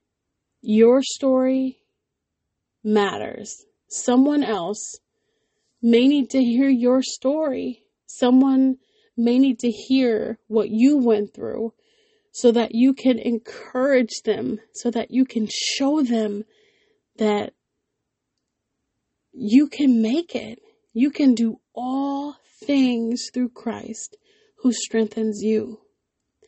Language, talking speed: English, 105 wpm